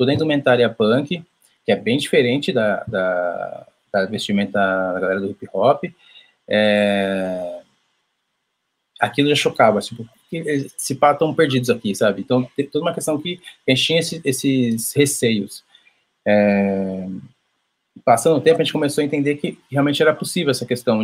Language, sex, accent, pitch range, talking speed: Portuguese, male, Brazilian, 105-140 Hz, 150 wpm